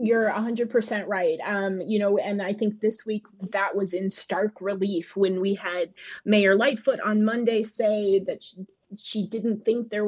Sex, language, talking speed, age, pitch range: female, English, 180 wpm, 20-39, 190-230 Hz